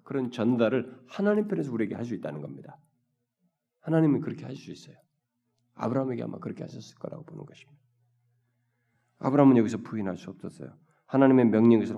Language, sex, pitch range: Korean, male, 100-155 Hz